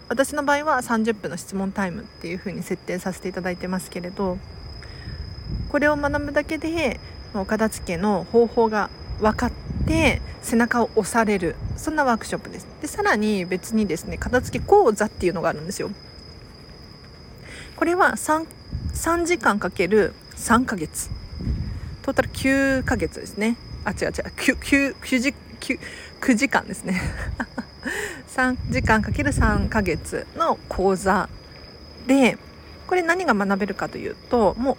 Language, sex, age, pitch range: Japanese, female, 40-59, 200-290 Hz